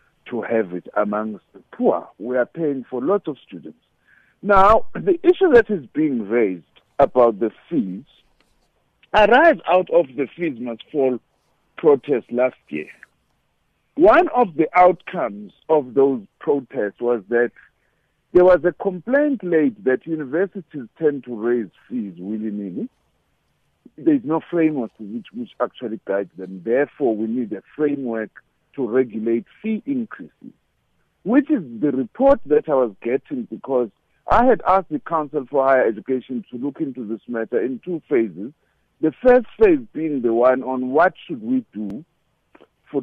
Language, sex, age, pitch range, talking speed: English, male, 50-69, 120-200 Hz, 150 wpm